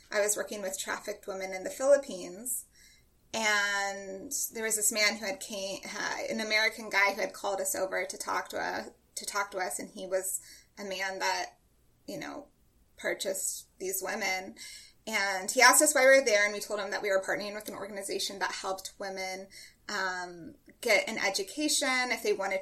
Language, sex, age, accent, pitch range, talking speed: English, female, 20-39, American, 190-245 Hz, 195 wpm